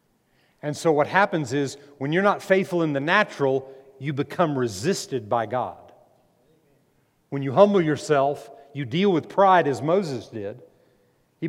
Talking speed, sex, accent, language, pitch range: 150 wpm, male, American, English, 135-180 Hz